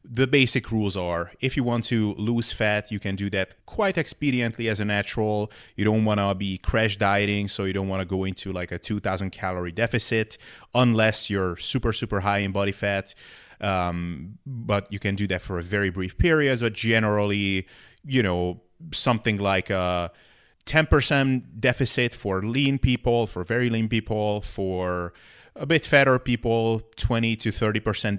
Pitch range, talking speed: 95-115 Hz, 170 wpm